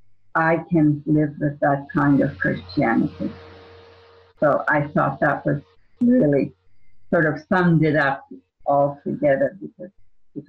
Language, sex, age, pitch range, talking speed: English, female, 50-69, 100-165 Hz, 130 wpm